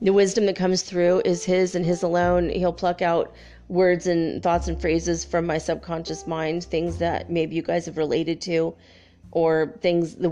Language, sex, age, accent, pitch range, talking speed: English, female, 30-49, American, 165-185 Hz, 190 wpm